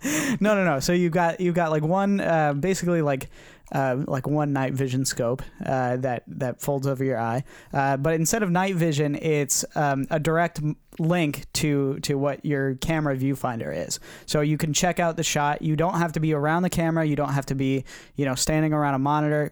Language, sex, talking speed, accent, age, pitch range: English, male, 215 wpm, American, 20-39, 135-160 Hz